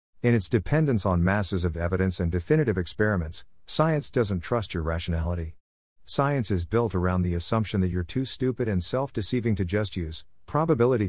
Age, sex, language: 50-69, male, English